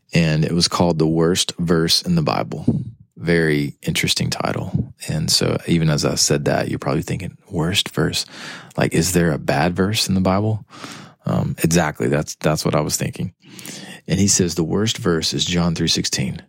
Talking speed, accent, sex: 190 wpm, American, male